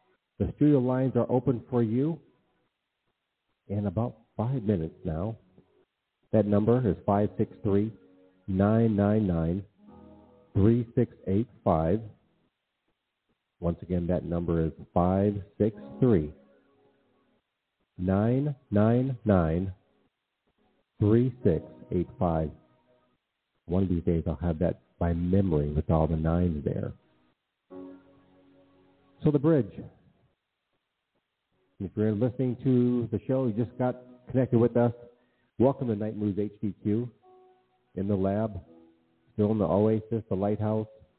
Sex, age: male, 50-69